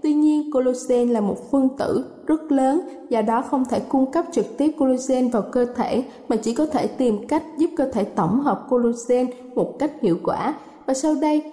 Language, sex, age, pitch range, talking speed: Vietnamese, female, 20-39, 235-280 Hz, 210 wpm